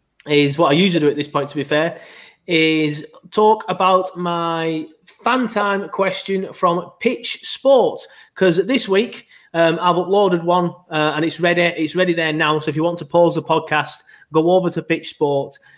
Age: 20-39